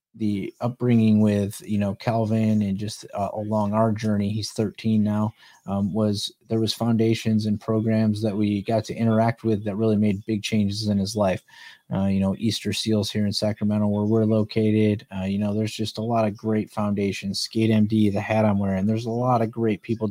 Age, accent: 30-49, American